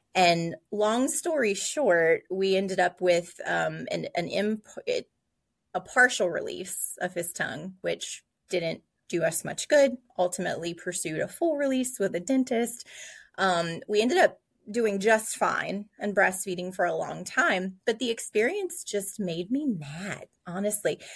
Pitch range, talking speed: 185-250 Hz, 145 wpm